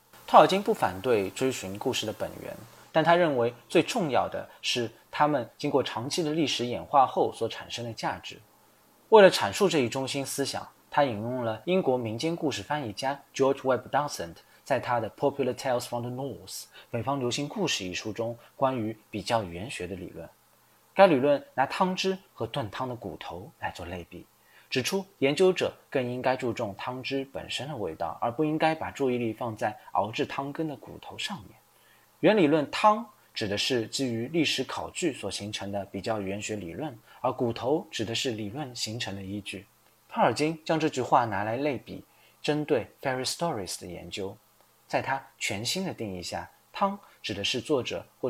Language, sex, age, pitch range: Chinese, male, 20-39, 105-145 Hz